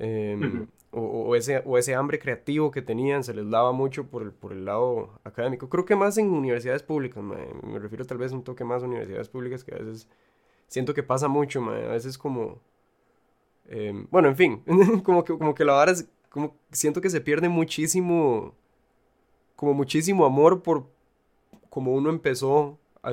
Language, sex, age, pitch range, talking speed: Spanish, male, 20-39, 120-140 Hz, 190 wpm